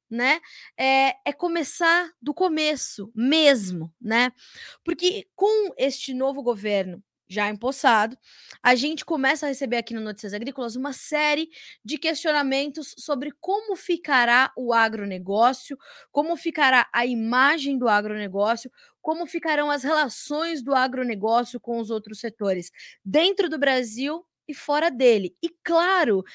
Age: 20-39